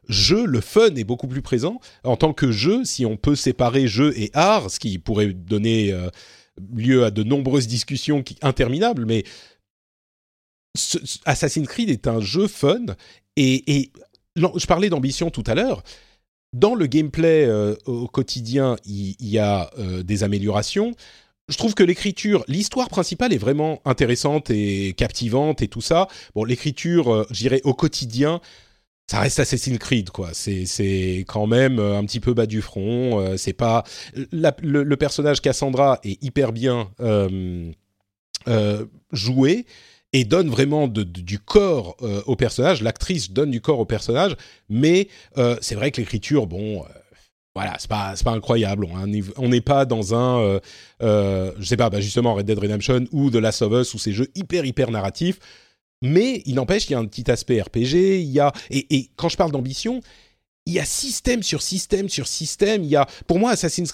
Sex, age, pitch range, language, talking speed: male, 40-59, 110-150 Hz, French, 175 wpm